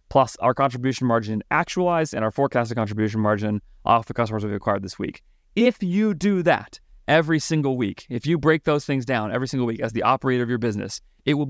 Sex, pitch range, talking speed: male, 110-140 Hz, 215 wpm